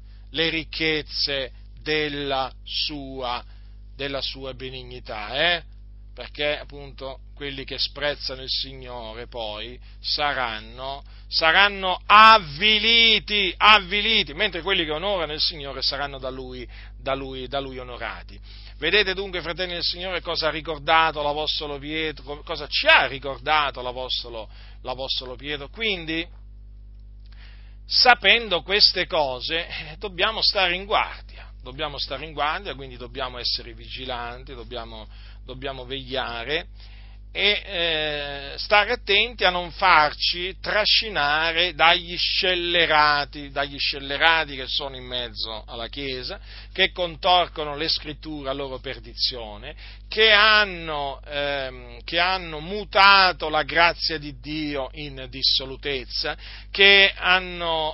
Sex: male